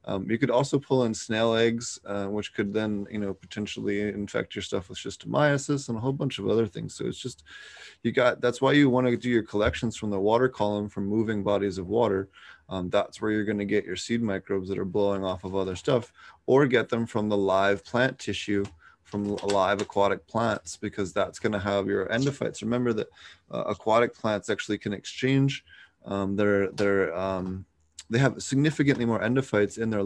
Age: 20-39